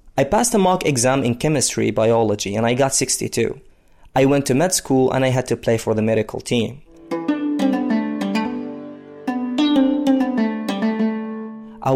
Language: English